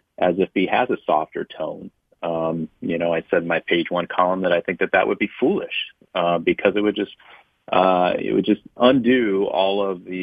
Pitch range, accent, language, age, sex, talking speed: 85-95 Hz, American, English, 30-49, male, 225 wpm